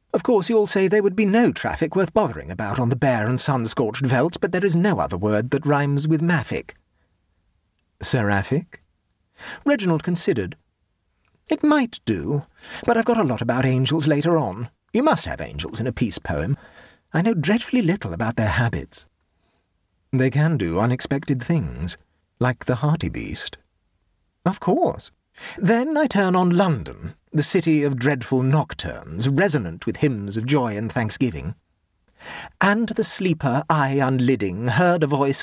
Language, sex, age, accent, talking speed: English, male, 40-59, British, 160 wpm